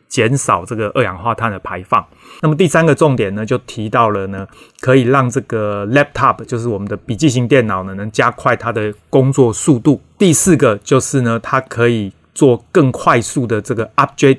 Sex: male